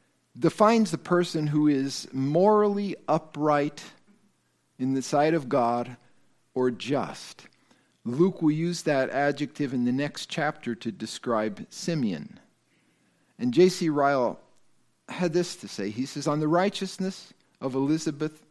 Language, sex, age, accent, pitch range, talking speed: English, male, 50-69, American, 125-170 Hz, 130 wpm